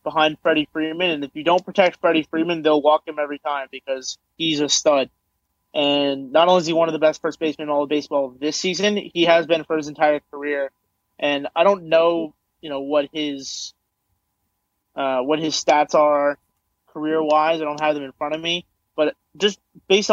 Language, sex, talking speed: English, male, 205 wpm